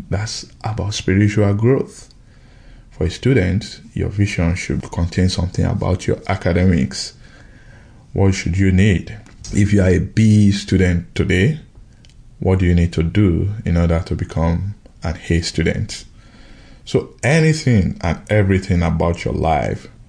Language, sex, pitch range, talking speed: English, male, 90-115 Hz, 135 wpm